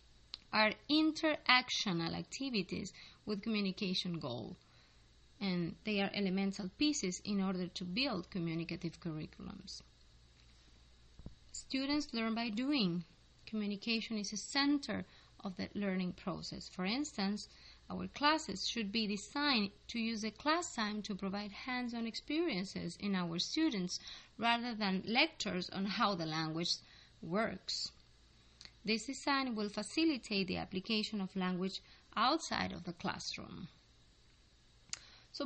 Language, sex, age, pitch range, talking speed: English, female, 20-39, 180-235 Hz, 115 wpm